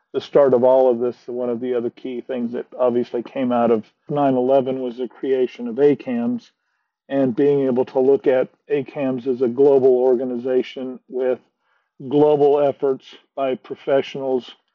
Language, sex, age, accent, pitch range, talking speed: English, male, 50-69, American, 125-145 Hz, 160 wpm